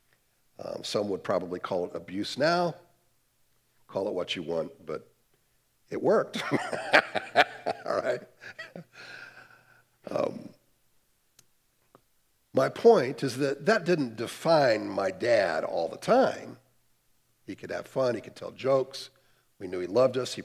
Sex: male